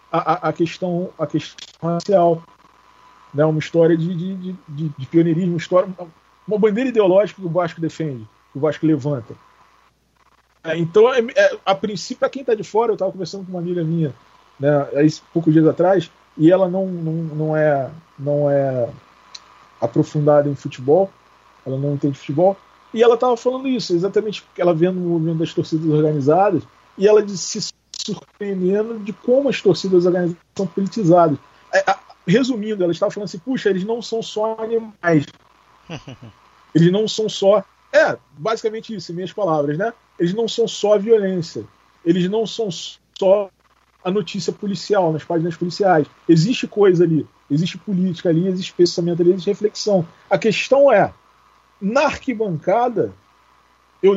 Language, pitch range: Portuguese, 155-205 Hz